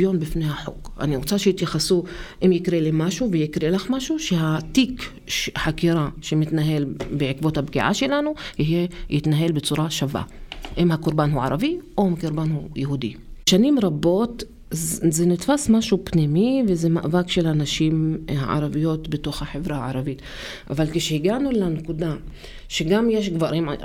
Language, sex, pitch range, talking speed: Hebrew, female, 155-205 Hz, 125 wpm